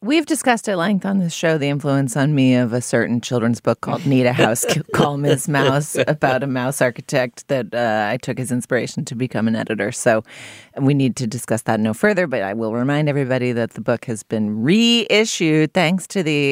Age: 30-49